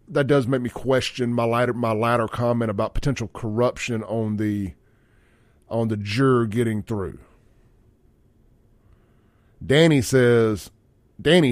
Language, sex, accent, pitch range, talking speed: English, male, American, 115-130 Hz, 120 wpm